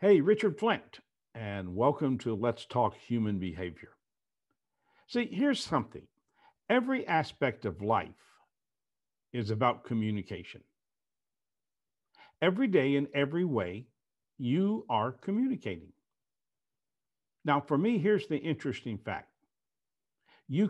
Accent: American